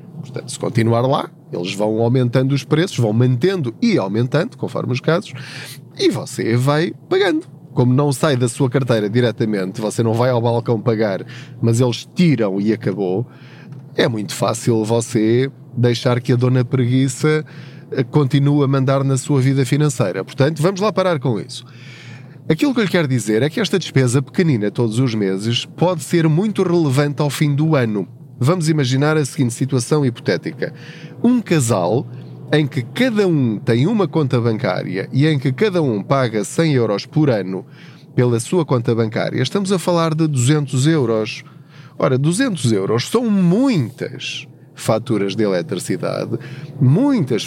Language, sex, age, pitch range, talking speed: Portuguese, male, 20-39, 120-155 Hz, 160 wpm